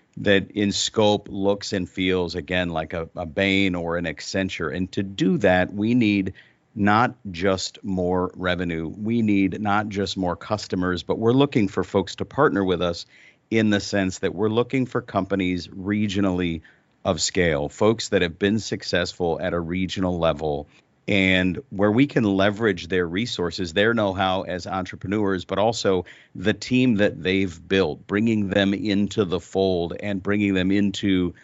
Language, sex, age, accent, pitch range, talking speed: English, male, 50-69, American, 90-105 Hz, 165 wpm